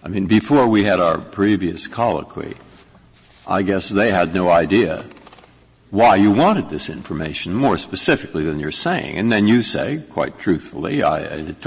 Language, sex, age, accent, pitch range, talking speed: English, male, 60-79, American, 95-150 Hz, 165 wpm